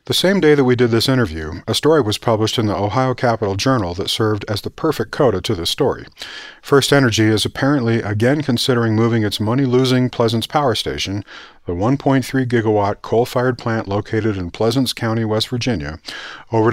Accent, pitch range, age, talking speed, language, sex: American, 100-125 Hz, 40-59, 180 wpm, English, male